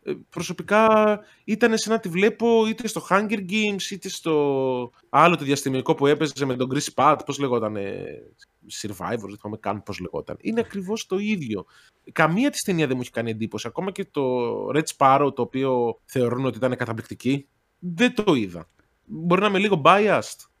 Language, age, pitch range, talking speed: Greek, 20-39, 120-180 Hz, 175 wpm